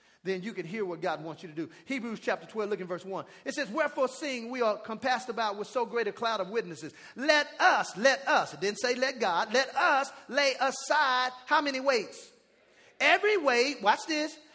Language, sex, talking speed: English, male, 215 wpm